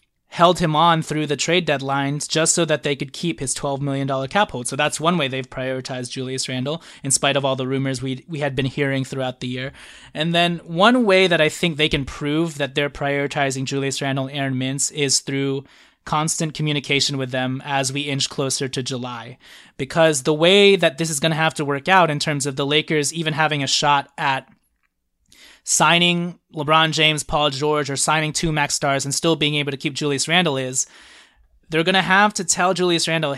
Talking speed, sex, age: 215 wpm, male, 20-39